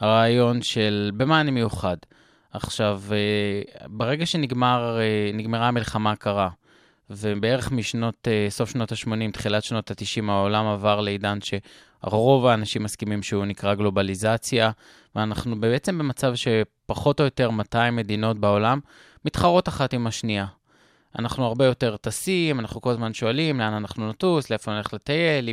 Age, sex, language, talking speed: 20-39, male, Hebrew, 130 wpm